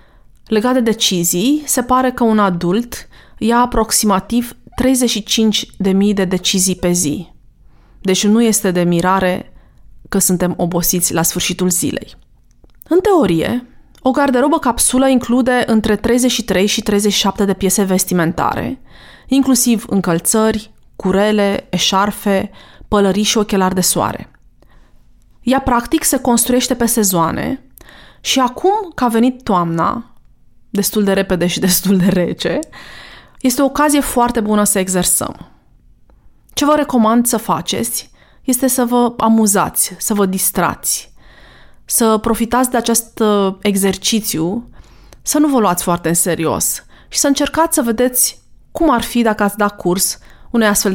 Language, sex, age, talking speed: Romanian, female, 30-49, 130 wpm